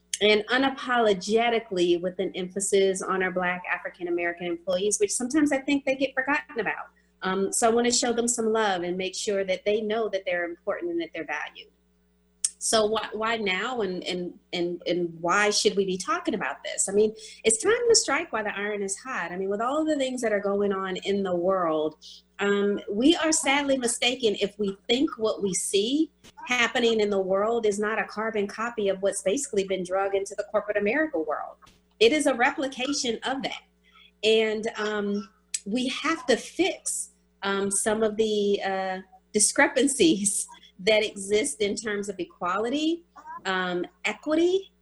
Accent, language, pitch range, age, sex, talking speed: American, English, 190-235 Hz, 30-49, female, 175 wpm